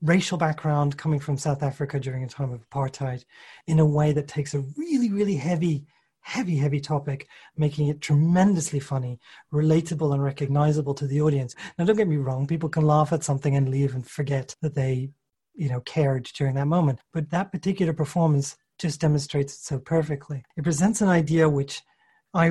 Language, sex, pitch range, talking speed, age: English, male, 140-165 Hz, 185 wpm, 30-49